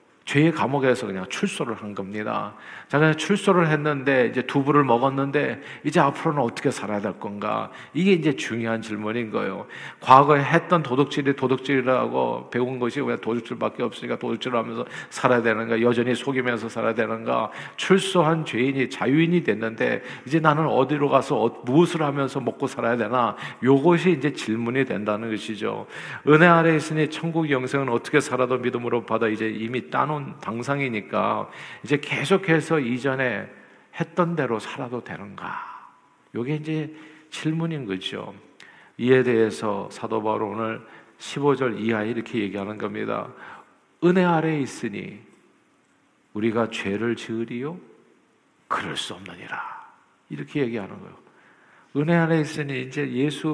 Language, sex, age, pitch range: Korean, male, 40-59, 115-155 Hz